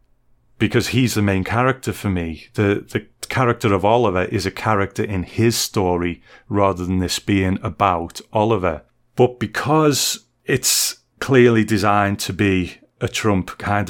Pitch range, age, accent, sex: 95-115 Hz, 30-49, British, male